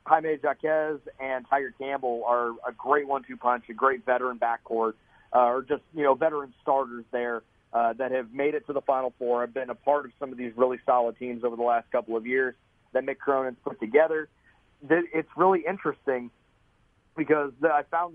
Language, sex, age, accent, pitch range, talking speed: English, male, 30-49, American, 125-155 Hz, 195 wpm